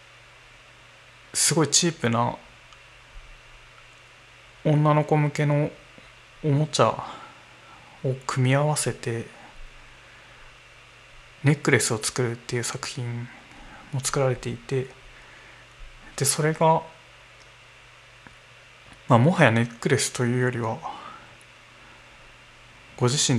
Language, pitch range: Japanese, 120-140 Hz